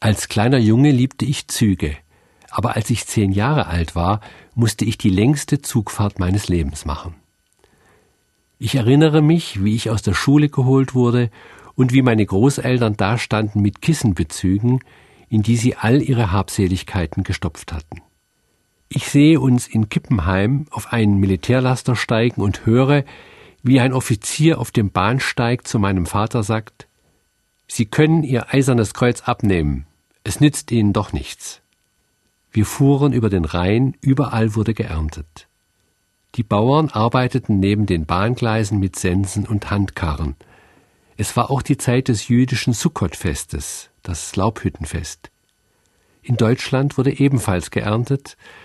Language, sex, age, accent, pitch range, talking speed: German, male, 50-69, German, 100-130 Hz, 135 wpm